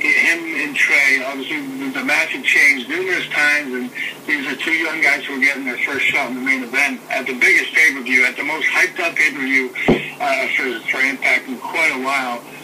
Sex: male